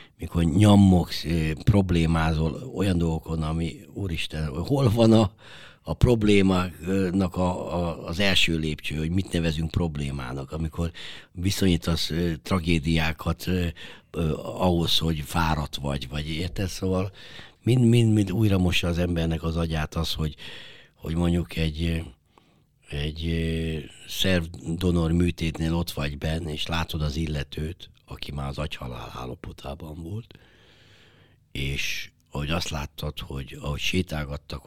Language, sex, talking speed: Hungarian, male, 120 wpm